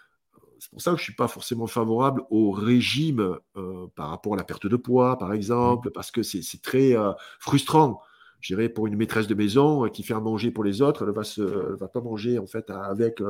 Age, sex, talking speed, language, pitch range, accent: 50-69, male, 250 wpm, French, 100-125 Hz, French